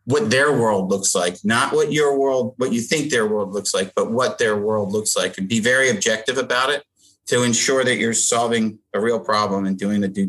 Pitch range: 100-125 Hz